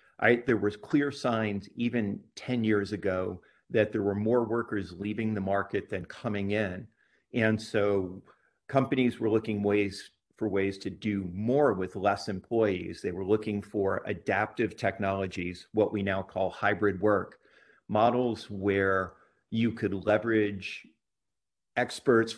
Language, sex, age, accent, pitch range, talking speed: English, male, 50-69, American, 100-115 Hz, 140 wpm